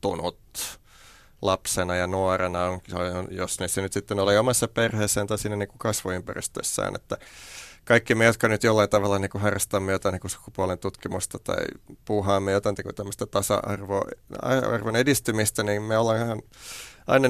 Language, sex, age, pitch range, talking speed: Finnish, male, 30-49, 105-135 Hz, 140 wpm